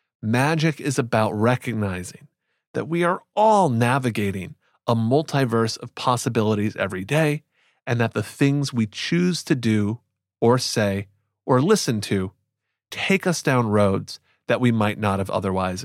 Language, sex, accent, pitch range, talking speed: English, male, American, 105-145 Hz, 145 wpm